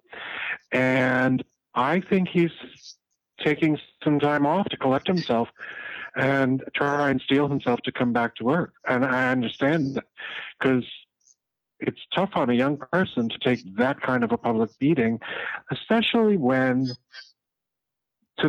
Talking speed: 140 wpm